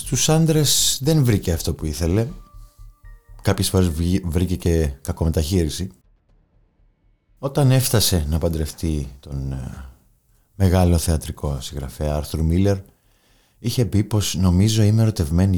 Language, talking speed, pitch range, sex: Greek, 110 wpm, 80-100 Hz, male